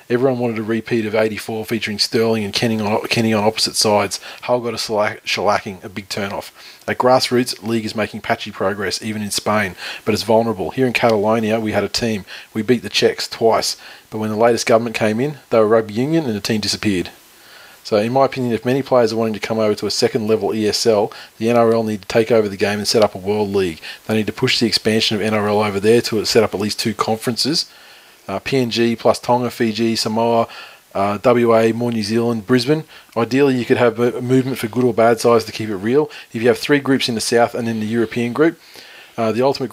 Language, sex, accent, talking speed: English, male, Australian, 235 wpm